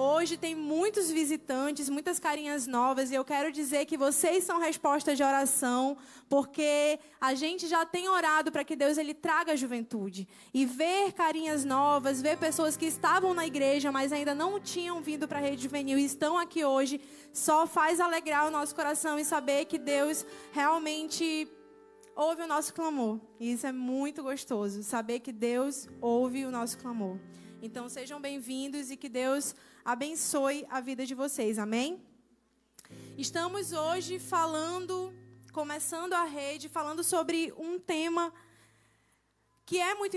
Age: 20-39